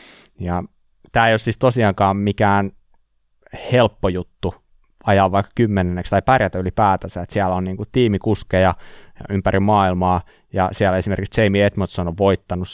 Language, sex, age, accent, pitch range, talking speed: Finnish, male, 20-39, native, 90-105 Hz, 135 wpm